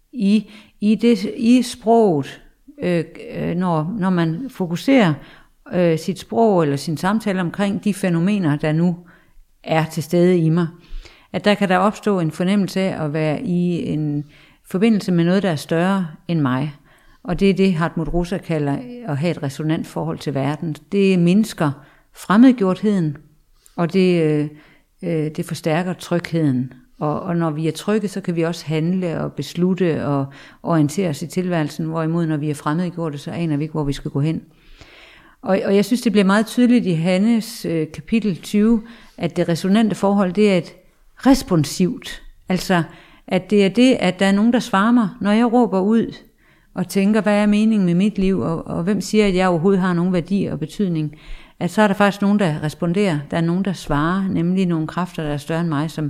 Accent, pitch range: native, 160-200 Hz